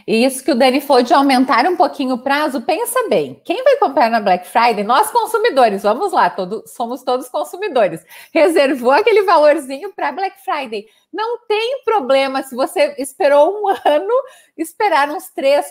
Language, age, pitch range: Portuguese, 30-49, 245-365 Hz